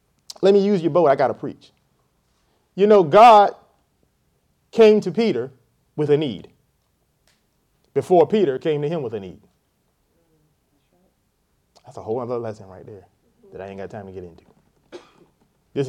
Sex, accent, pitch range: male, American, 120-185 Hz